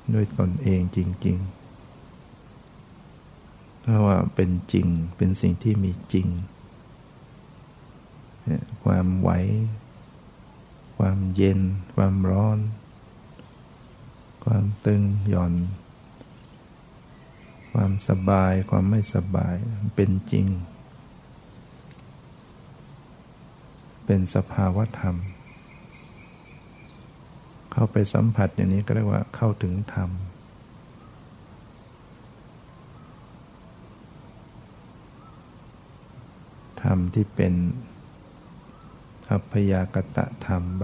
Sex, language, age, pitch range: male, Thai, 60-79, 95-110 Hz